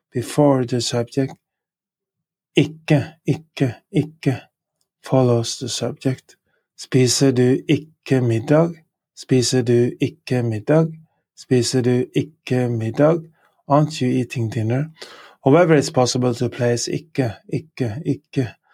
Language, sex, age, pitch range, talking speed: English, male, 30-49, 120-150 Hz, 105 wpm